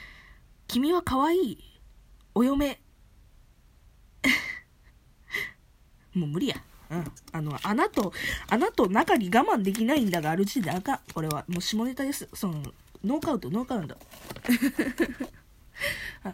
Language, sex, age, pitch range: Japanese, female, 20-39, 165-245 Hz